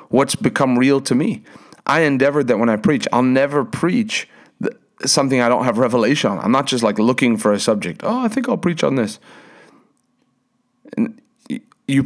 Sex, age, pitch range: male, 40-59, 105-135 Hz